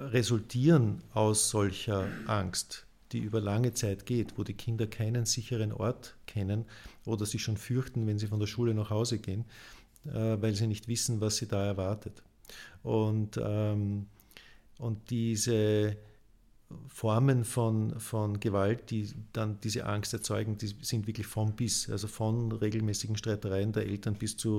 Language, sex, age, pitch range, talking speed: German, male, 50-69, 105-115 Hz, 150 wpm